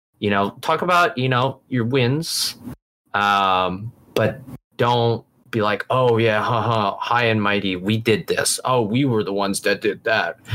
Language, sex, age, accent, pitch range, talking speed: English, male, 20-39, American, 100-130 Hz, 175 wpm